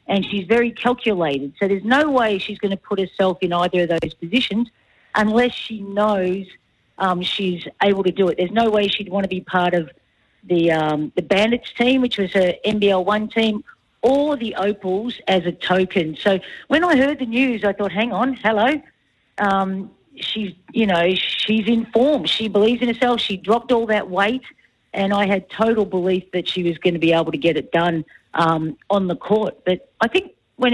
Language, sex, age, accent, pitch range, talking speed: English, female, 40-59, Australian, 180-225 Hz, 200 wpm